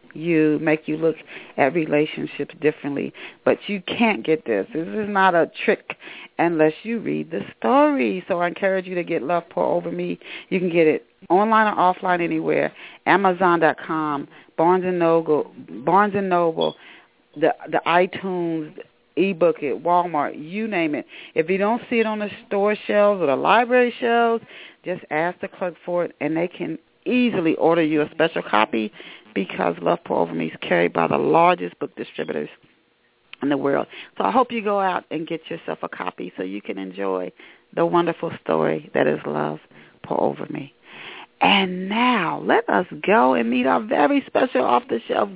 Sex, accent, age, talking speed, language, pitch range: female, American, 40-59, 180 wpm, English, 155-210 Hz